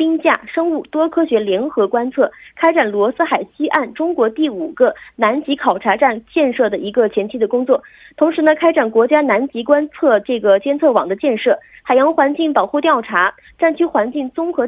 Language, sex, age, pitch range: Korean, female, 30-49, 230-310 Hz